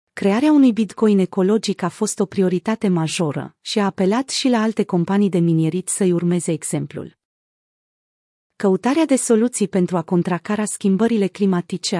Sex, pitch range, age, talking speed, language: female, 175-220 Hz, 30-49, 145 wpm, Romanian